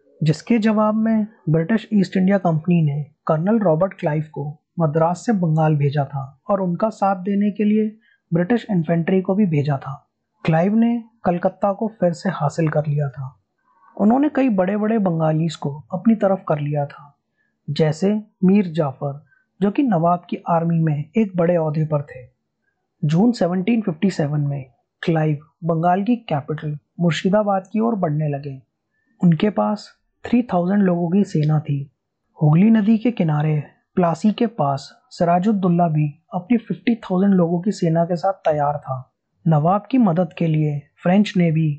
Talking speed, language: 155 wpm, Hindi